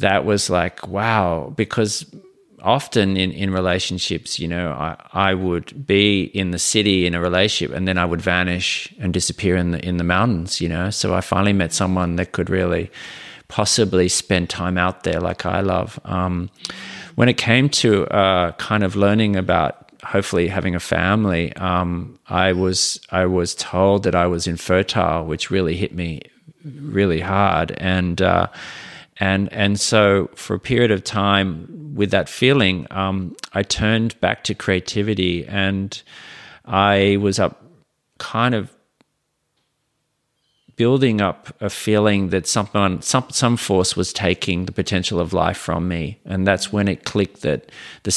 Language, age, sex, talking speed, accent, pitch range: English, 30-49, male, 160 wpm, Australian, 90-105 Hz